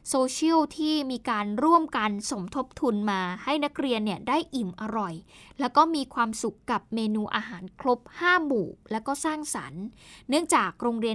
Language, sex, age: Thai, female, 10-29